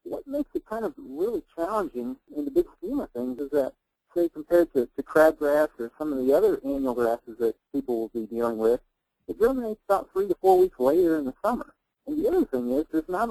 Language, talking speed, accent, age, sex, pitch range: English, 230 wpm, American, 50-69, male, 125-175 Hz